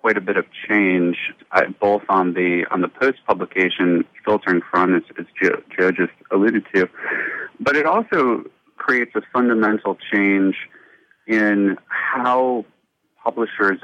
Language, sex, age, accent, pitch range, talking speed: English, male, 30-49, American, 90-105 Hz, 140 wpm